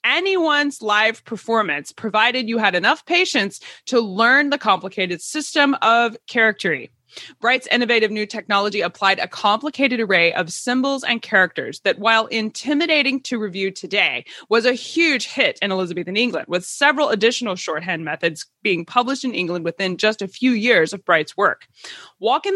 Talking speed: 155 wpm